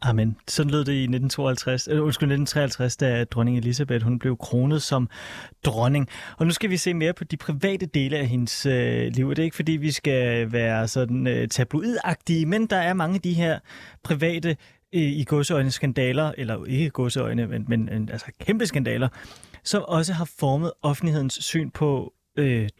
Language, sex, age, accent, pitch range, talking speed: Danish, male, 30-49, native, 125-160 Hz, 180 wpm